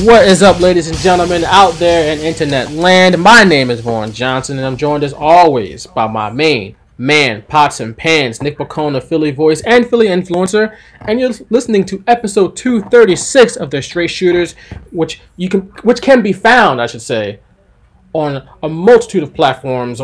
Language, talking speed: English, 180 wpm